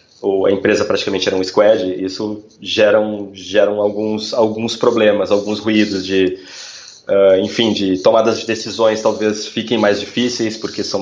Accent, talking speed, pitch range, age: Brazilian, 165 wpm, 100-115 Hz, 20-39